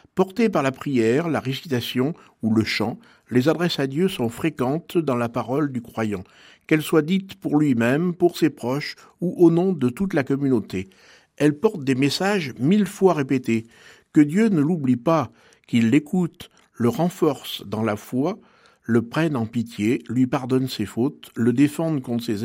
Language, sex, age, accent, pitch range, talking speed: French, male, 60-79, French, 125-165 Hz, 175 wpm